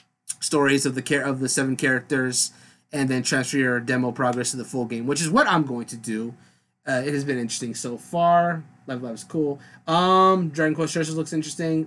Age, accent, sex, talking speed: 30-49, American, male, 215 wpm